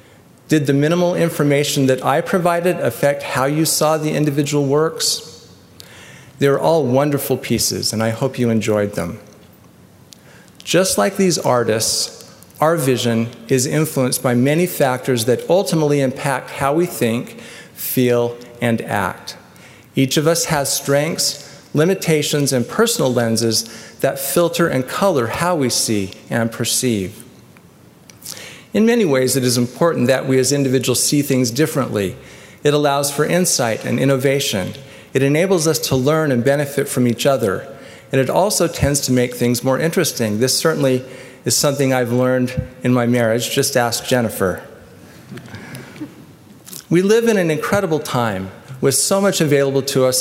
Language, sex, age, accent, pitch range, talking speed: English, male, 40-59, American, 120-155 Hz, 150 wpm